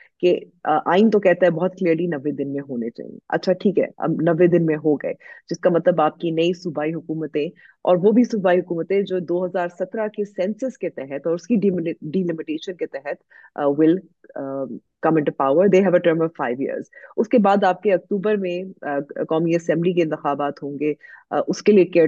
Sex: female